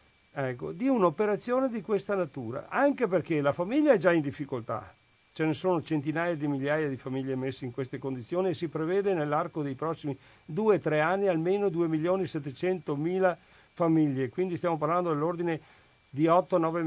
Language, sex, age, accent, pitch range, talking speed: Italian, male, 50-69, native, 140-190 Hz, 155 wpm